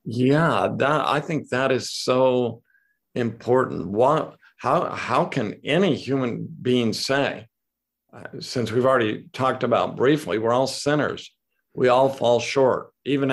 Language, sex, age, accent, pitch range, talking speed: English, male, 50-69, American, 125-160 Hz, 140 wpm